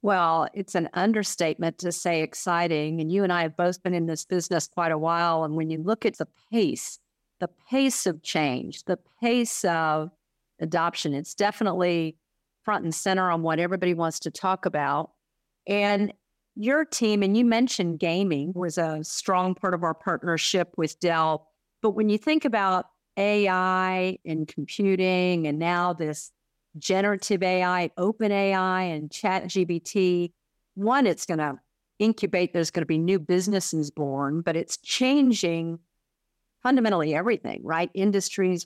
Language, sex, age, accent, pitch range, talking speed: English, female, 50-69, American, 165-200 Hz, 155 wpm